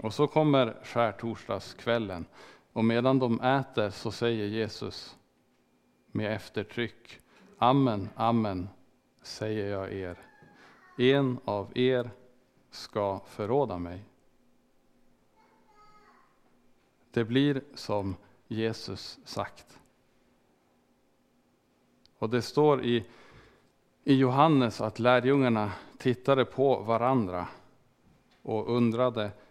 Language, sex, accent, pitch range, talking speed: Swedish, male, Norwegian, 105-125 Hz, 90 wpm